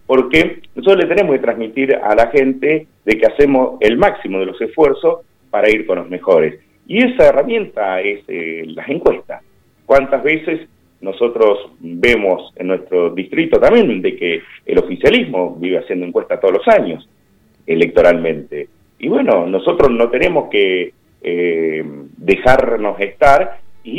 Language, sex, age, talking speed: Spanish, male, 40-59, 145 wpm